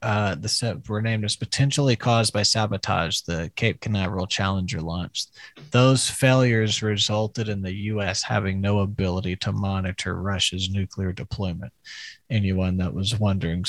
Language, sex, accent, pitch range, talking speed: English, male, American, 95-110 Hz, 140 wpm